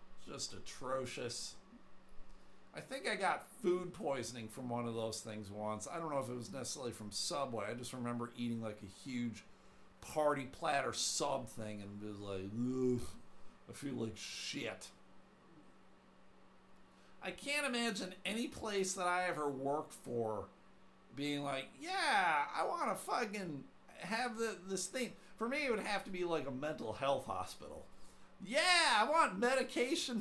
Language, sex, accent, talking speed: English, male, American, 160 wpm